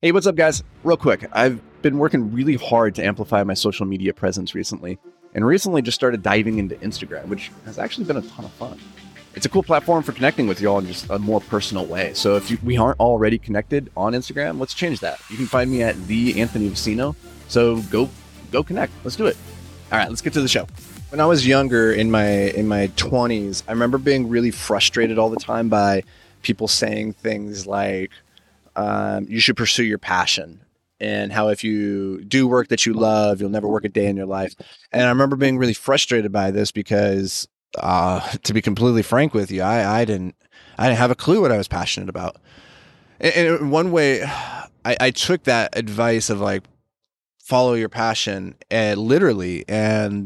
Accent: American